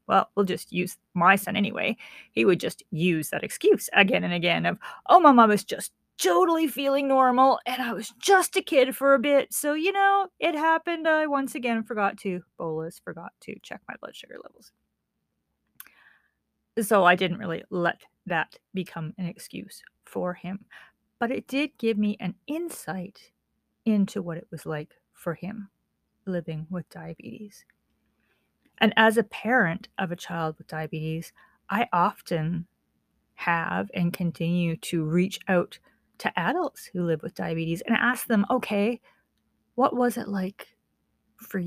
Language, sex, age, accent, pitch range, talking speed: English, female, 40-59, American, 175-240 Hz, 160 wpm